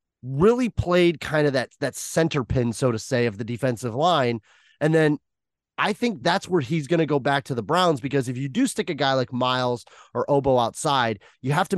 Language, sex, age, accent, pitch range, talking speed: English, male, 30-49, American, 125-160 Hz, 225 wpm